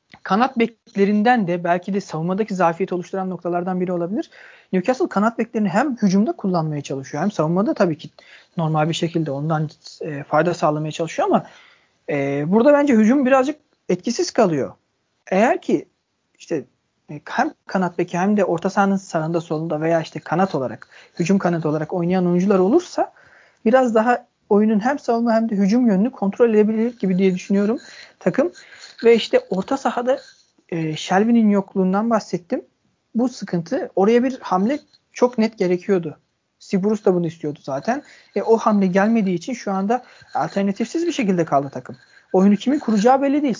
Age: 40-59